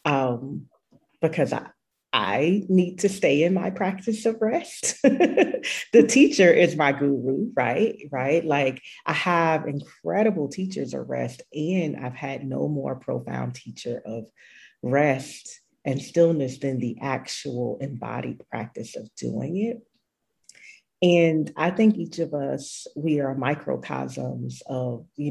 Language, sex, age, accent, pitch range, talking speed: English, female, 40-59, American, 135-180 Hz, 135 wpm